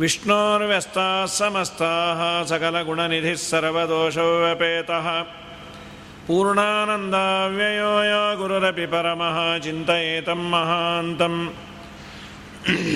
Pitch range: 170-205 Hz